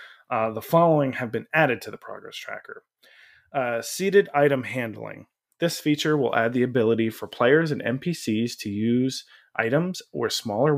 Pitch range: 115-145 Hz